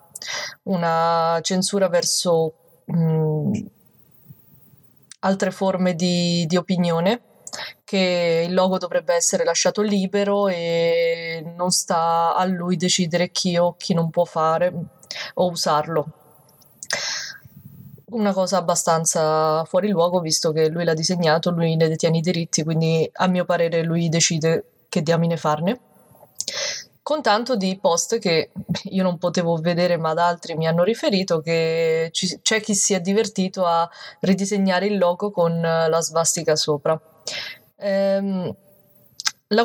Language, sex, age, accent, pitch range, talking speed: Italian, female, 20-39, native, 165-190 Hz, 130 wpm